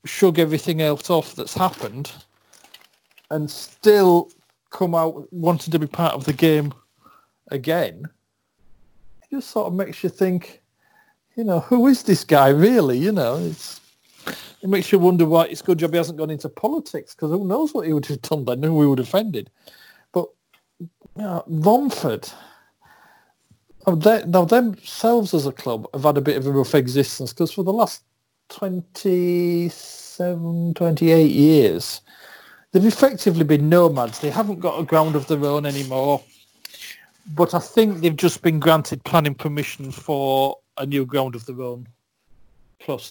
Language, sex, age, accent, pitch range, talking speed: English, male, 40-59, British, 140-185 Hz, 165 wpm